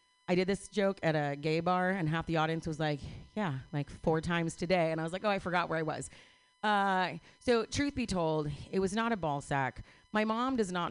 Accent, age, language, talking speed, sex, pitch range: American, 30-49, English, 240 wpm, female, 155-220 Hz